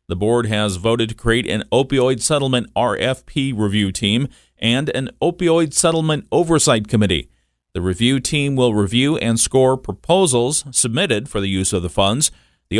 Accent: American